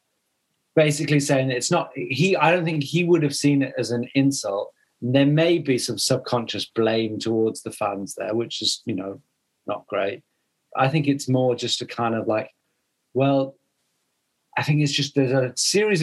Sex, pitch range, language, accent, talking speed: male, 115-145 Hz, English, British, 185 wpm